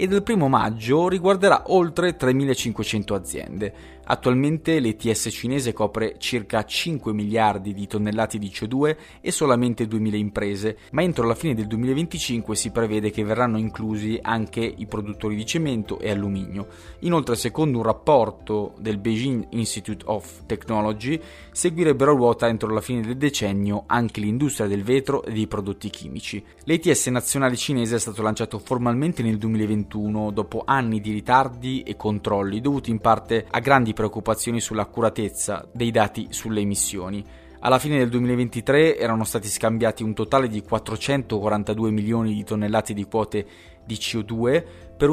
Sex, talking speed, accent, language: male, 145 wpm, native, Italian